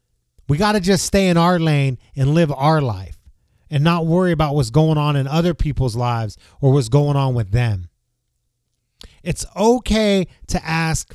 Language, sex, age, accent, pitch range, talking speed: English, male, 30-49, American, 125-200 Hz, 180 wpm